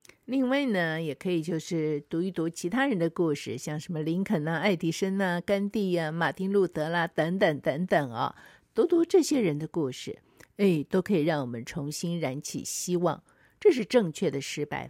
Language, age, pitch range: Chinese, 50-69, 160-210 Hz